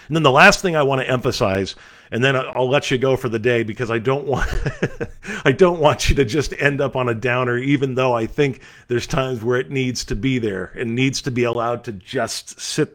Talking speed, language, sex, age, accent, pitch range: 245 wpm, English, male, 50-69, American, 115-180 Hz